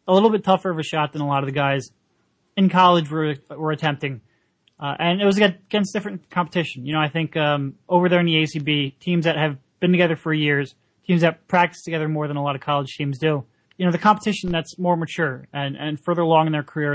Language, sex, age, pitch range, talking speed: English, male, 30-49, 145-175 Hz, 240 wpm